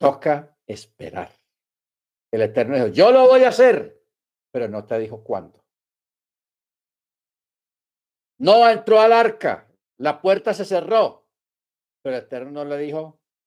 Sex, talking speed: male, 130 wpm